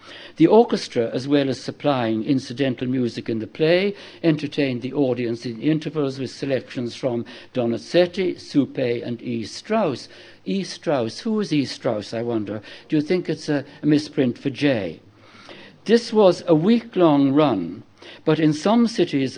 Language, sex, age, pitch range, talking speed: English, male, 60-79, 125-170 Hz, 155 wpm